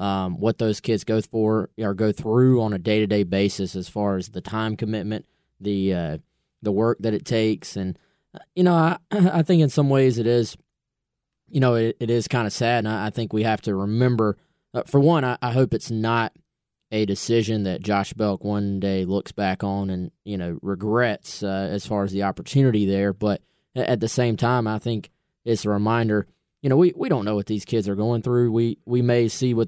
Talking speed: 220 wpm